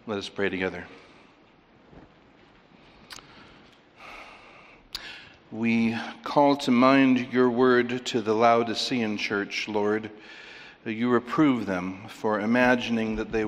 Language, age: English, 60-79